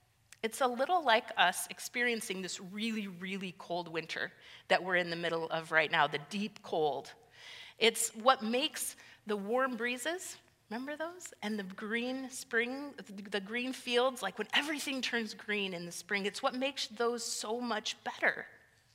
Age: 40-59